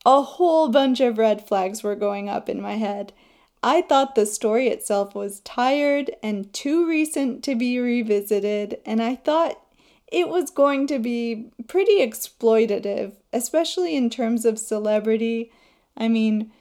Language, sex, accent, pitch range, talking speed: English, female, American, 215-270 Hz, 150 wpm